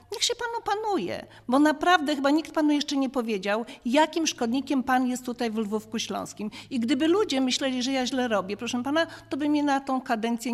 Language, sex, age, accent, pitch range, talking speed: Polish, female, 40-59, native, 230-295 Hz, 205 wpm